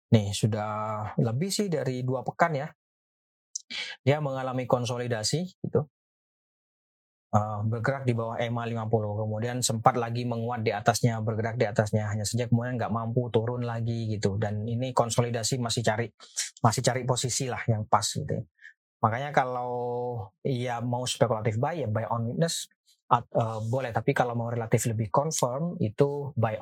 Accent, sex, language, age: native, male, Indonesian, 20-39